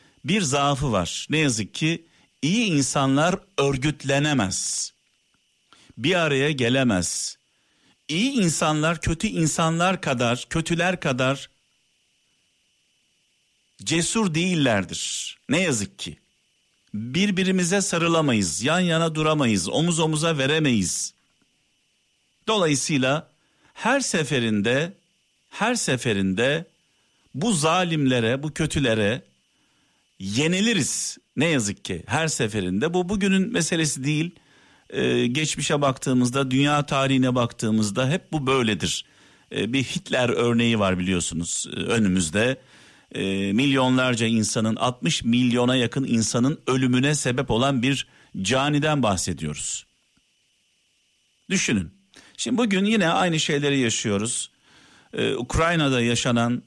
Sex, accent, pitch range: male, native, 120-165 Hz